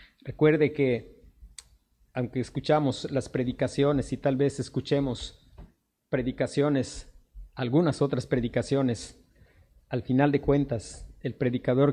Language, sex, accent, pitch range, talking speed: Spanish, male, Mexican, 120-140 Hz, 100 wpm